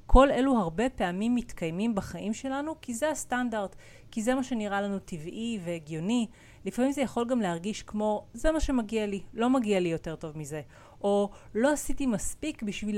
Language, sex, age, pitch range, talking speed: Hebrew, female, 30-49, 165-225 Hz, 175 wpm